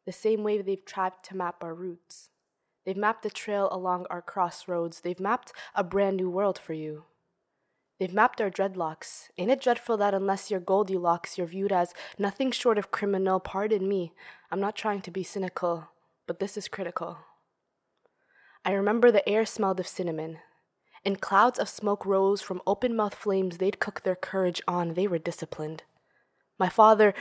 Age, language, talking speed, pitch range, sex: 20-39, English, 175 wpm, 180-210 Hz, female